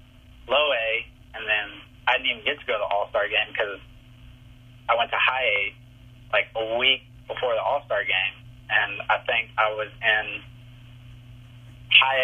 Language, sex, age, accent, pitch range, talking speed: English, male, 30-49, American, 115-125 Hz, 165 wpm